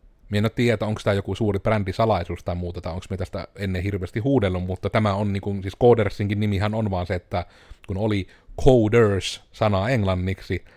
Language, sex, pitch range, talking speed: Finnish, male, 95-110 Hz, 180 wpm